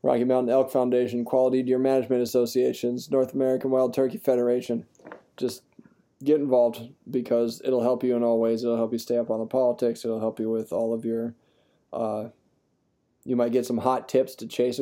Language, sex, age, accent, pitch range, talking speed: English, male, 20-39, American, 120-130 Hz, 190 wpm